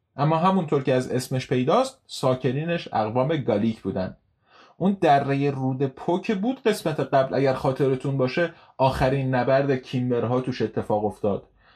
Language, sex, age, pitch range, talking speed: Persian, male, 30-49, 120-155 Hz, 135 wpm